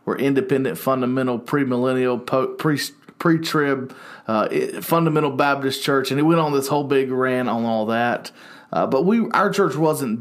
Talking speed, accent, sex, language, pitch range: 145 wpm, American, male, English, 110-135 Hz